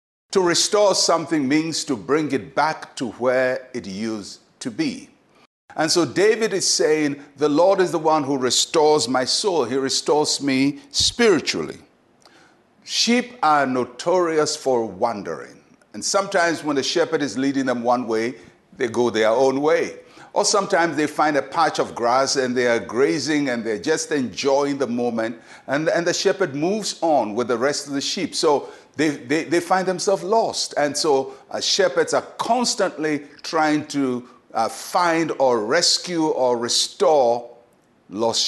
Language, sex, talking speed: English, male, 160 wpm